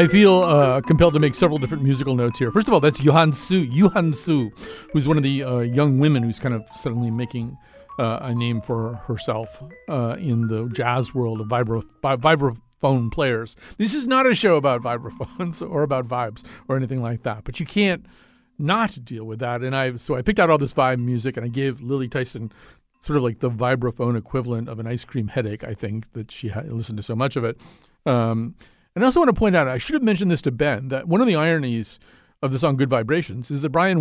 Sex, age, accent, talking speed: male, 50-69, American, 230 wpm